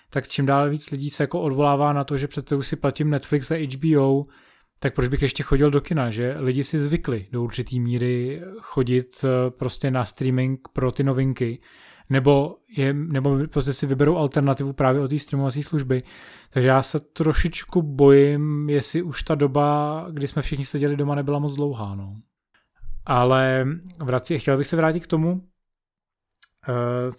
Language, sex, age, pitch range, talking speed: Czech, male, 20-39, 135-150 Hz, 170 wpm